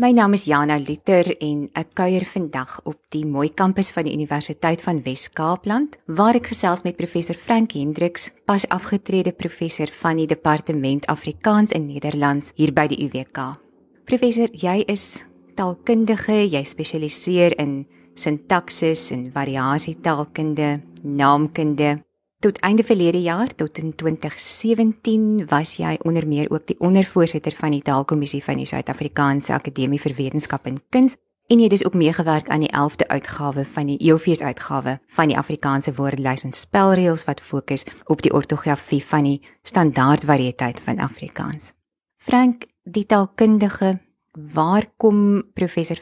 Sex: female